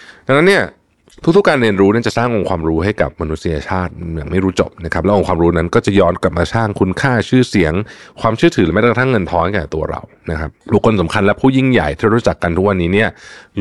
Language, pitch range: Thai, 80-110 Hz